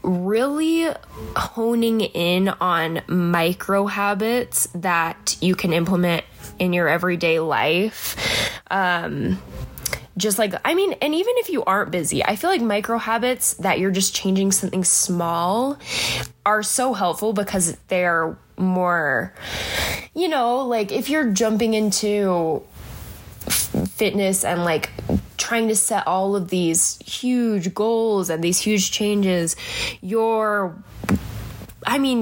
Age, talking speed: 10-29, 125 wpm